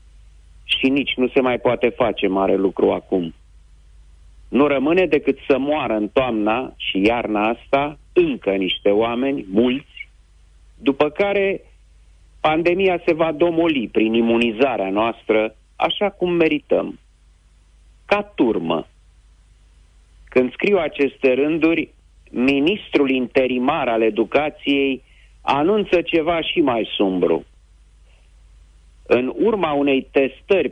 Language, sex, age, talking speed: Romanian, male, 40-59, 105 wpm